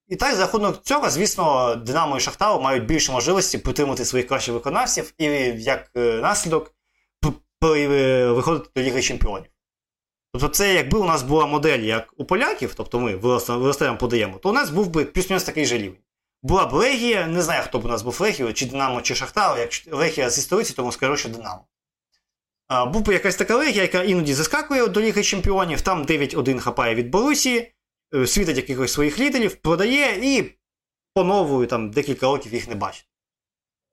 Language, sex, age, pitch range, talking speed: Ukrainian, male, 20-39, 120-180 Hz, 170 wpm